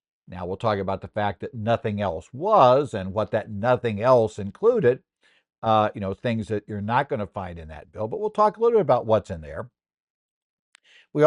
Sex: male